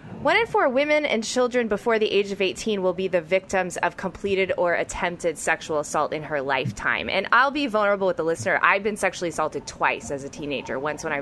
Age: 20-39